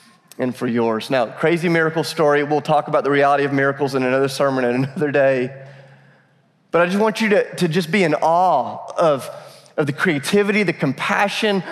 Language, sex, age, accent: English, male, 30-49, American